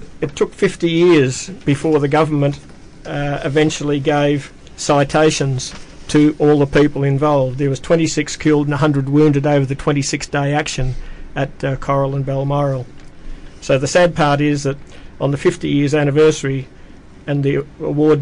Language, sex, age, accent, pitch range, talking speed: English, male, 50-69, Australian, 140-150 Hz, 150 wpm